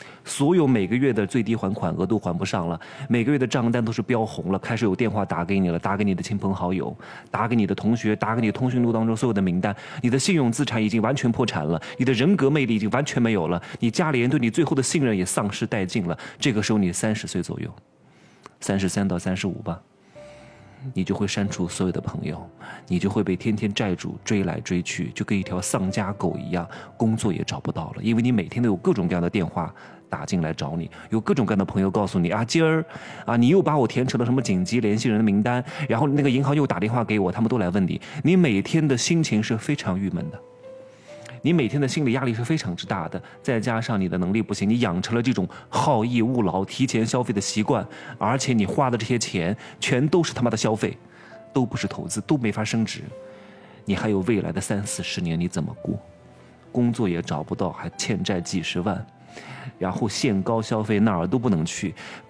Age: 20-39